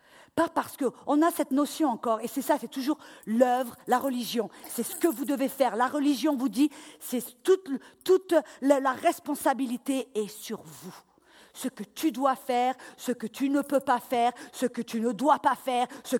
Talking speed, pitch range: 195 wpm, 205-280 Hz